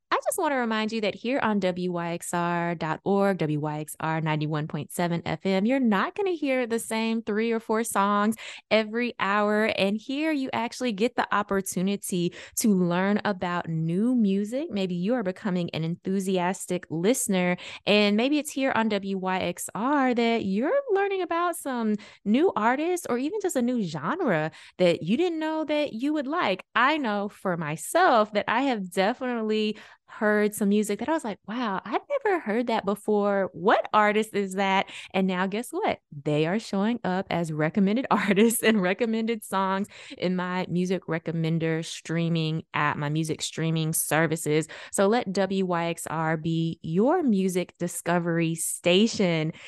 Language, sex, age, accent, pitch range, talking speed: English, female, 20-39, American, 170-225 Hz, 155 wpm